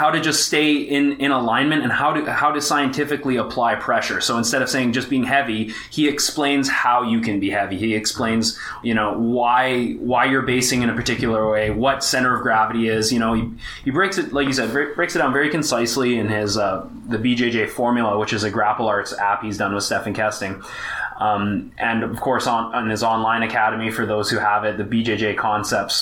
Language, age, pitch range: English, 20-39, 105-130 Hz